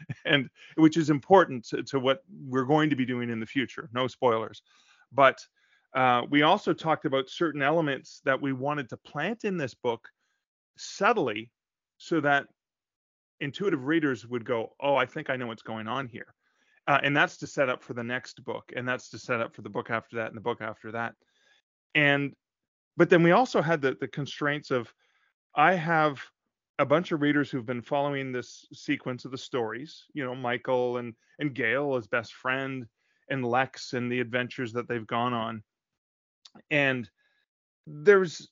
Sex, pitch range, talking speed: male, 120-150 Hz, 185 wpm